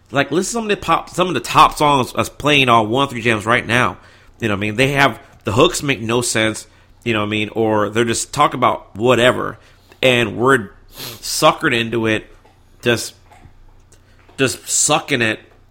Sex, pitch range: male, 105-140 Hz